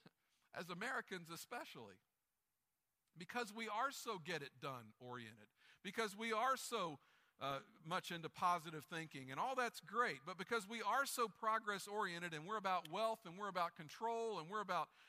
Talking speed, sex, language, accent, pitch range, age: 155 wpm, male, English, American, 170-220 Hz, 50-69